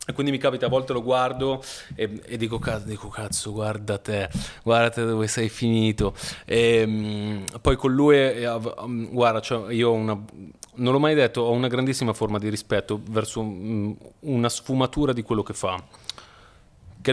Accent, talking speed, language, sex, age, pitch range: native, 175 wpm, Italian, male, 30-49, 110-140 Hz